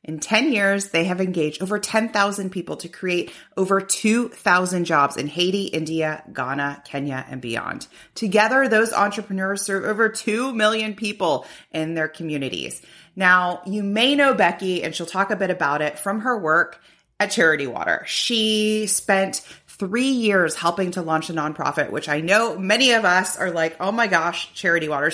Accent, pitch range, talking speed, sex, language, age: American, 150-210 Hz, 170 wpm, female, English, 30-49